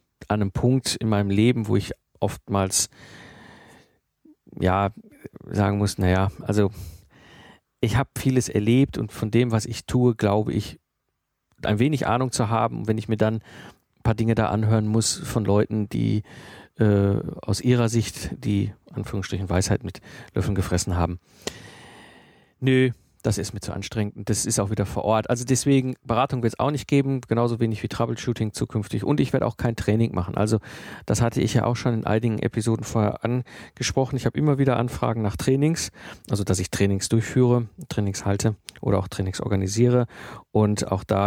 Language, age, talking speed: German, 40-59, 175 wpm